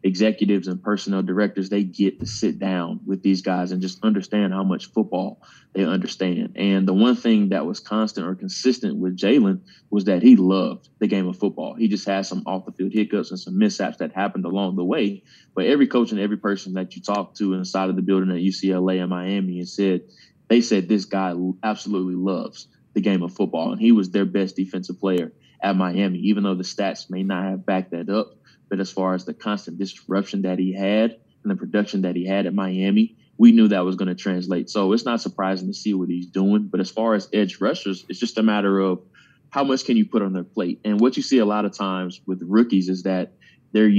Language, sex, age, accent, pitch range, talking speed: English, male, 20-39, American, 95-105 Hz, 230 wpm